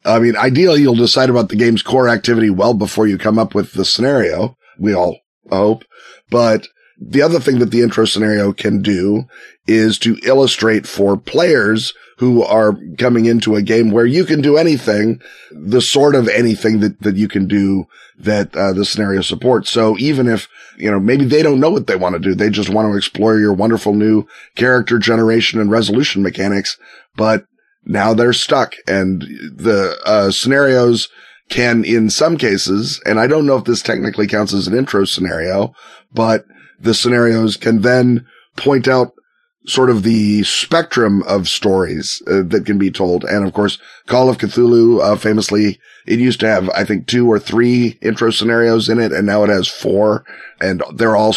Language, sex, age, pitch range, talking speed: English, male, 30-49, 105-120 Hz, 185 wpm